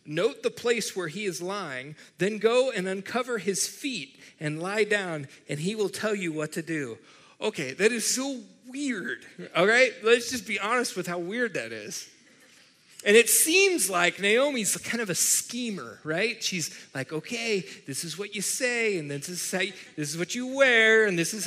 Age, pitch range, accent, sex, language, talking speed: 30-49, 175-235 Hz, American, male, English, 190 wpm